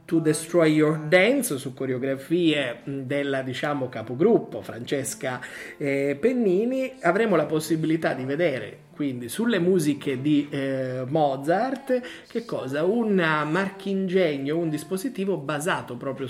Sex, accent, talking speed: male, native, 120 wpm